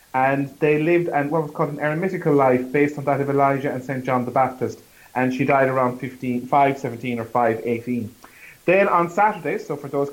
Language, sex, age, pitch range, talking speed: English, male, 30-49, 125-150 Hz, 190 wpm